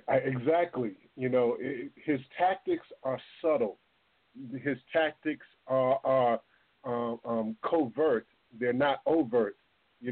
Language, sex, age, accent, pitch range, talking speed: English, male, 40-59, American, 130-165 Hz, 120 wpm